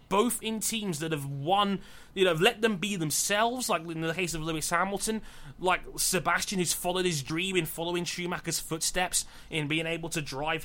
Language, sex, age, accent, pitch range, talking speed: English, male, 20-39, British, 150-200 Hz, 190 wpm